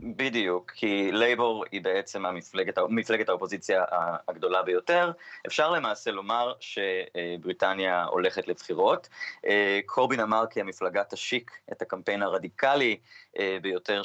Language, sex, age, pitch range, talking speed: Hebrew, male, 30-49, 95-140 Hz, 105 wpm